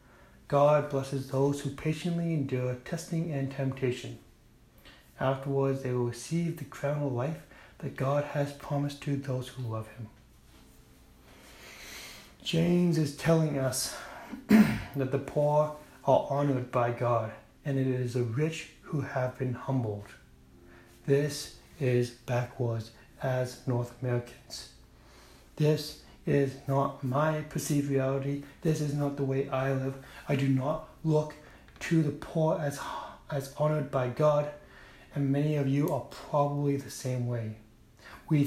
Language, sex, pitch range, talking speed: English, male, 125-150 Hz, 135 wpm